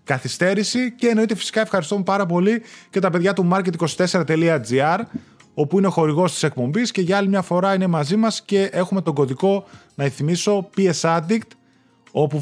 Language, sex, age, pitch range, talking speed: Greek, male, 20-39, 140-195 Hz, 170 wpm